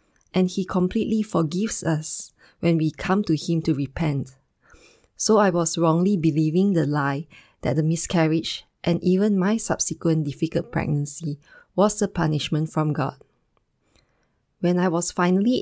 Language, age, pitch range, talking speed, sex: English, 20-39, 150-180 Hz, 140 wpm, female